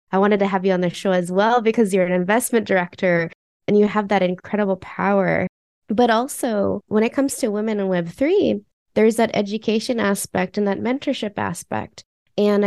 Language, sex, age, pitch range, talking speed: English, female, 20-39, 185-220 Hz, 185 wpm